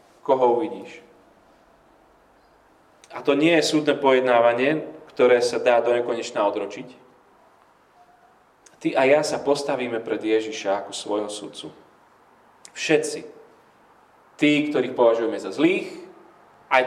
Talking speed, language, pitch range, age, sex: 110 wpm, Slovak, 115-175 Hz, 30-49, male